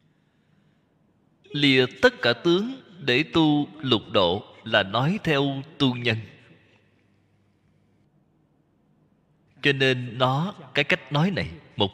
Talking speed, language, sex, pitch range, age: 105 wpm, Vietnamese, male, 115-165 Hz, 20-39